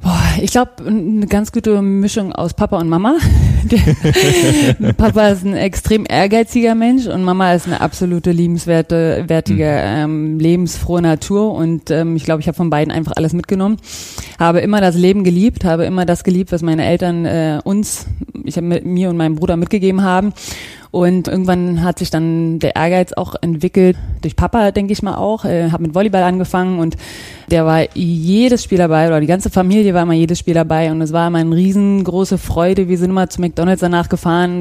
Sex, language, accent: female, German, German